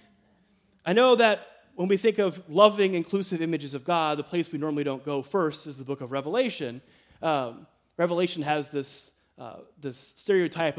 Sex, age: male, 30-49